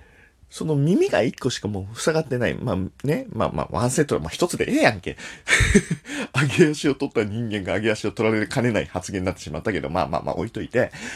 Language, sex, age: Japanese, male, 40-59